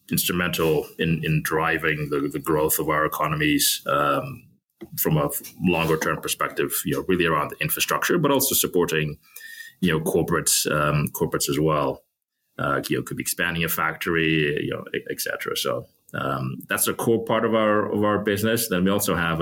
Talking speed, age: 180 wpm, 20-39